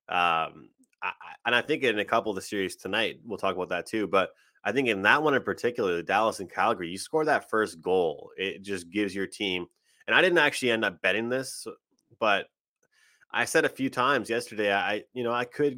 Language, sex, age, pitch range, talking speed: English, male, 20-39, 100-130 Hz, 225 wpm